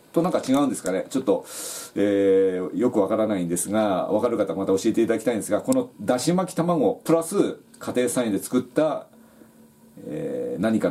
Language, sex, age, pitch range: Japanese, male, 40-59, 100-155 Hz